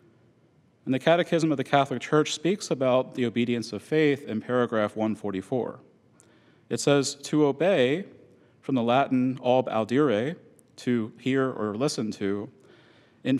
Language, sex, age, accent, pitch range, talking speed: English, male, 40-59, American, 115-145 Hz, 140 wpm